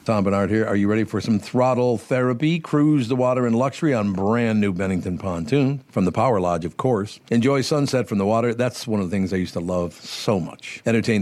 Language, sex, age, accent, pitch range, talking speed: English, male, 50-69, American, 100-130 Hz, 230 wpm